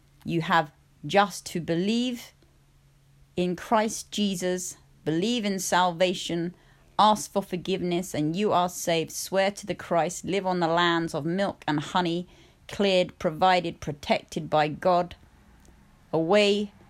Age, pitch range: 30-49, 155-190 Hz